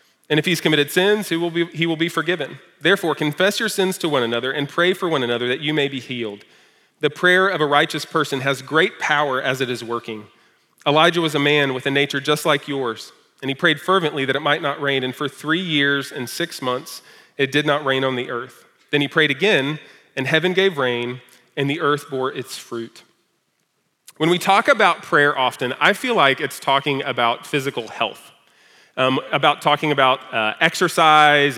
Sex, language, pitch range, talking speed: male, English, 135-170 Hz, 205 wpm